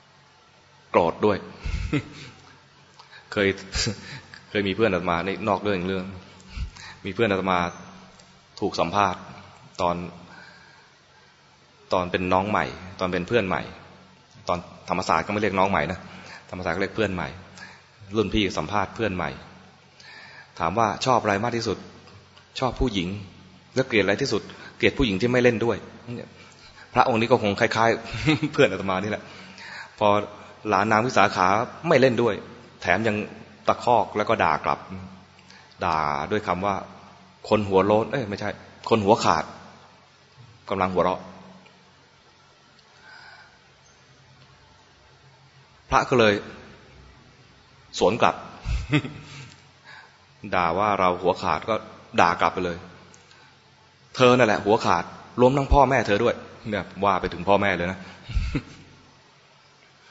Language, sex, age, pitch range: English, male, 20-39, 90-115 Hz